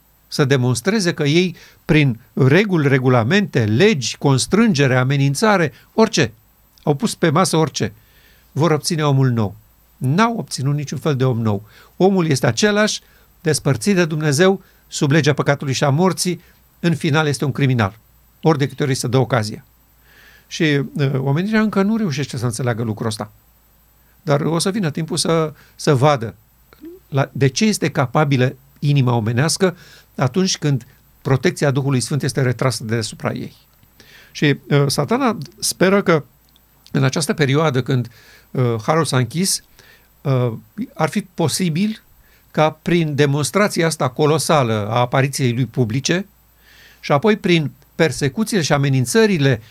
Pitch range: 130-170 Hz